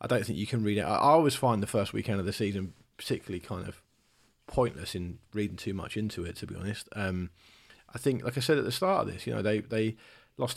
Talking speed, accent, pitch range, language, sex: 255 wpm, British, 105-125 Hz, English, male